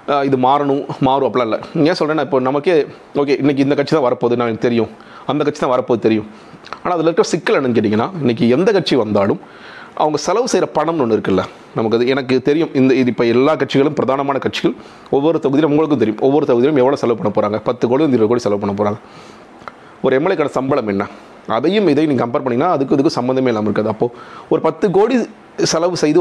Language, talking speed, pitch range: Tamil, 195 wpm, 115-145 Hz